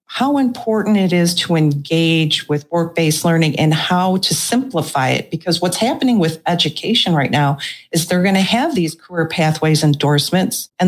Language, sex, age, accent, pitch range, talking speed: English, female, 50-69, American, 150-190 Hz, 170 wpm